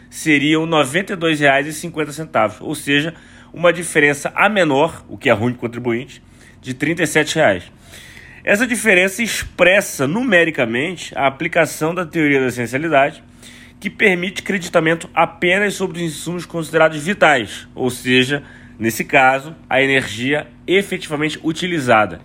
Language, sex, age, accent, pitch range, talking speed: Portuguese, male, 30-49, Brazilian, 135-170 Hz, 125 wpm